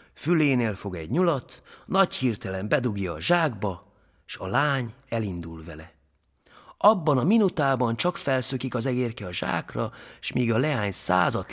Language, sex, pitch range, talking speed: Hungarian, male, 105-175 Hz, 145 wpm